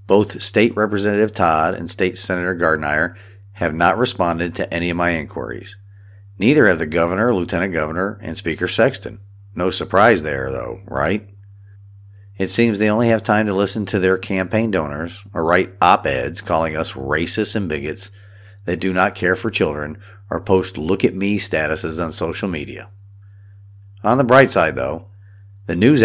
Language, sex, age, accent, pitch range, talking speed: English, male, 50-69, American, 90-100 Hz, 160 wpm